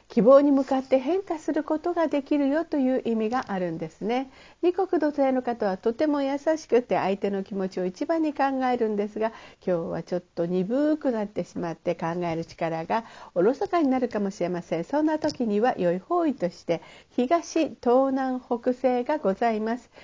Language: Japanese